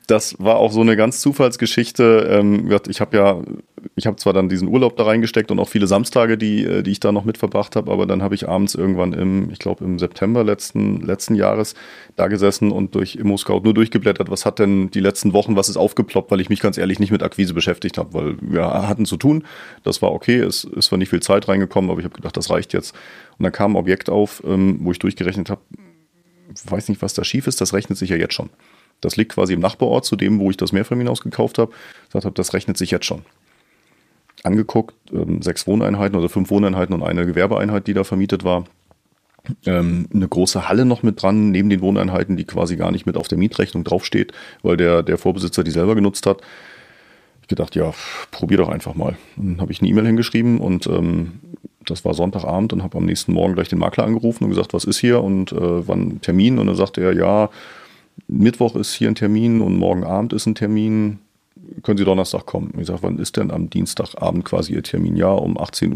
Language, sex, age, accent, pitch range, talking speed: German, male, 30-49, German, 95-110 Hz, 220 wpm